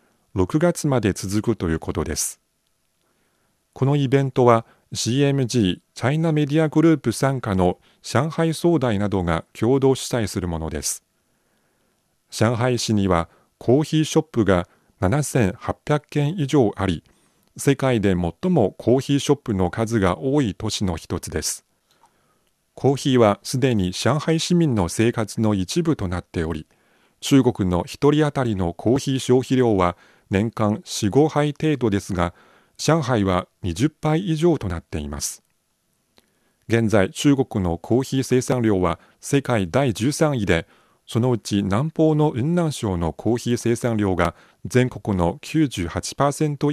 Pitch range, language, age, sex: 95-140 Hz, Japanese, 40-59, male